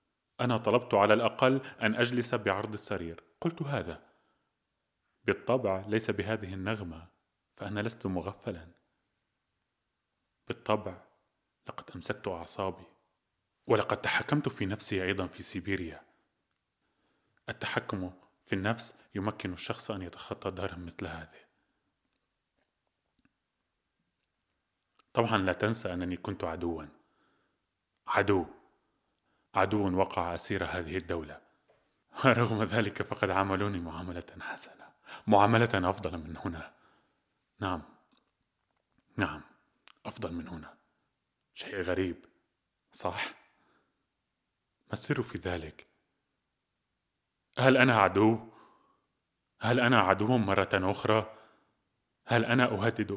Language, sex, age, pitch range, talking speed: Arabic, male, 20-39, 95-110 Hz, 95 wpm